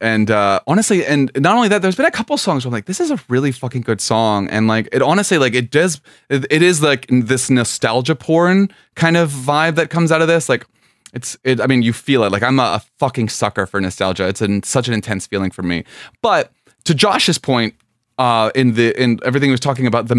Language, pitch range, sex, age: English, 115-160 Hz, male, 20-39